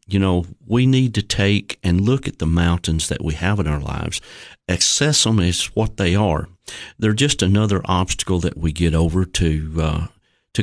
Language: English